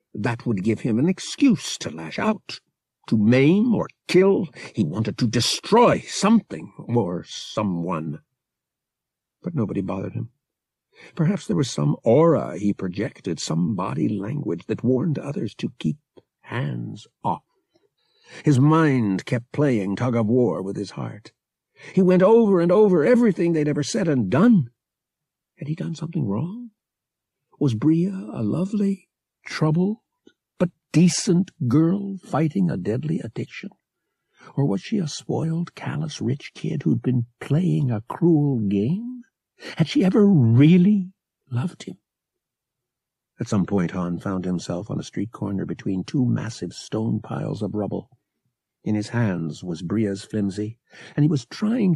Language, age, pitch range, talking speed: English, 60-79, 110-180 Hz, 140 wpm